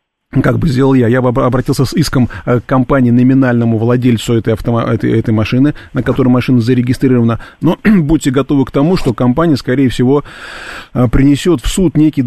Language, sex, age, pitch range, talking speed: Russian, male, 30-49, 115-140 Hz, 170 wpm